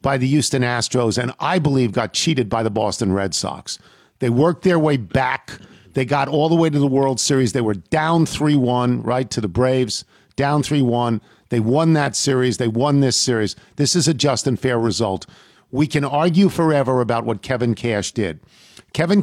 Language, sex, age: English, male, 50-69